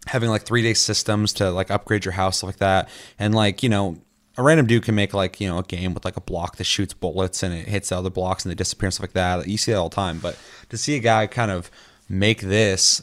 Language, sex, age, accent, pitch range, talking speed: English, male, 20-39, American, 95-115 Hz, 280 wpm